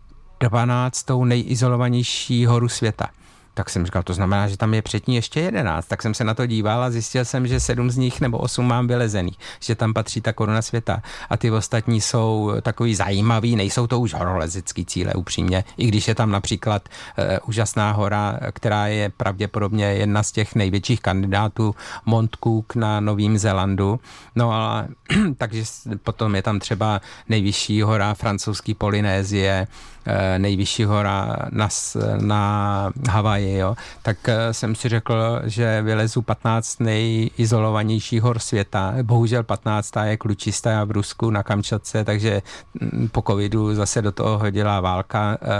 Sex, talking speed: male, 150 wpm